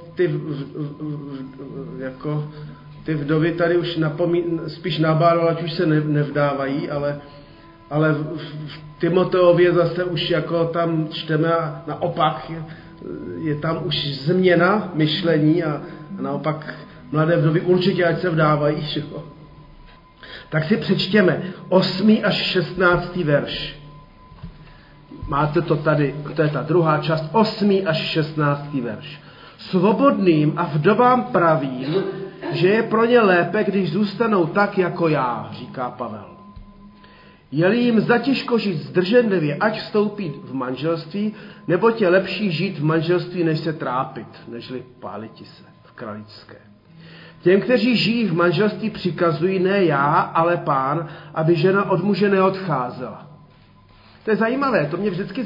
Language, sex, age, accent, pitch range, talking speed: Czech, male, 40-59, native, 150-185 Hz, 135 wpm